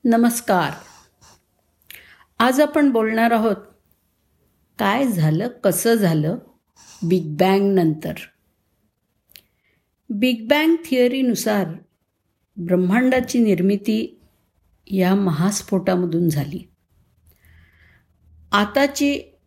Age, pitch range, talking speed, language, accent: 50-69, 165-240 Hz, 65 wpm, Marathi, native